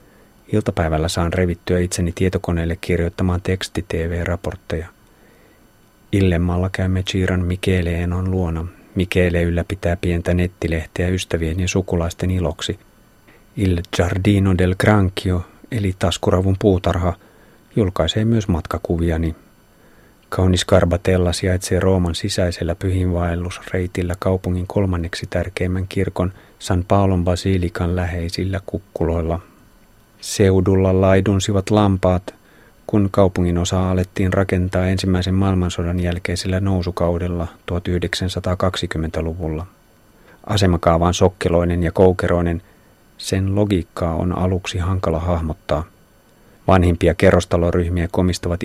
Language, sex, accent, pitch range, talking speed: Finnish, male, native, 85-95 Hz, 90 wpm